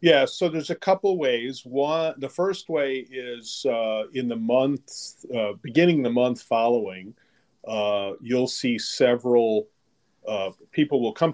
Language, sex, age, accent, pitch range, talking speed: English, male, 40-59, American, 105-135 Hz, 150 wpm